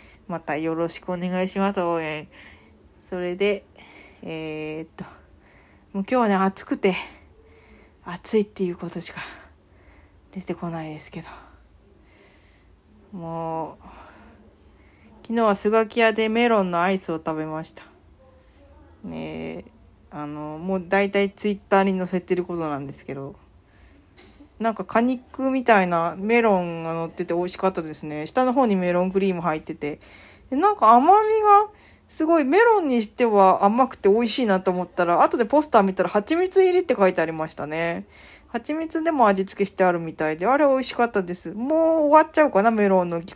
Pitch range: 155-225 Hz